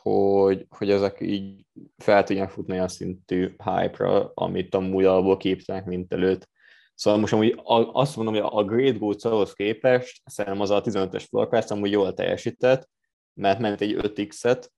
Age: 20-39